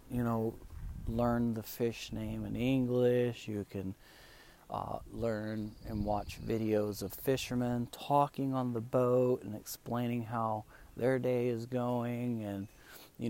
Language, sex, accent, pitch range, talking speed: English, male, American, 105-125 Hz, 135 wpm